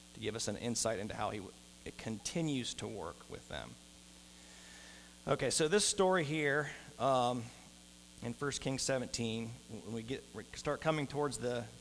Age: 40-59